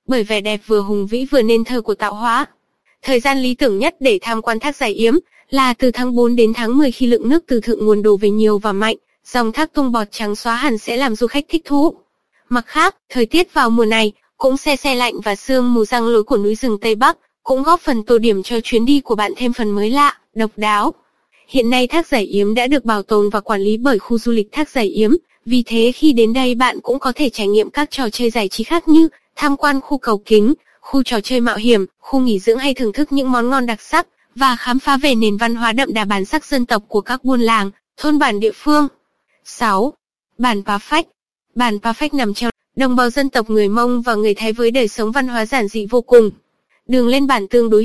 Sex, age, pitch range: female, 20-39, 220-275 Hz